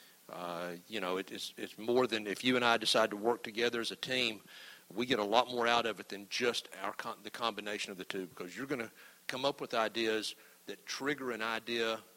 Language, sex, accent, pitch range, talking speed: English, male, American, 110-140 Hz, 235 wpm